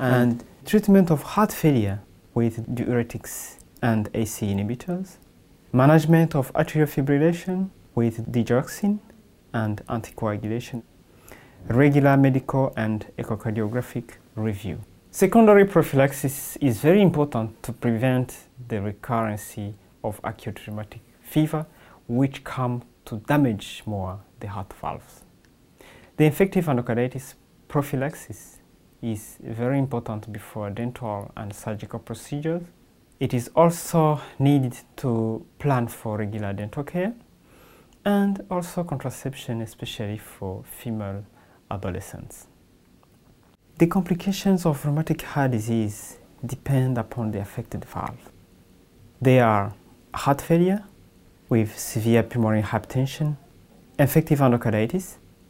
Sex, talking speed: male, 100 wpm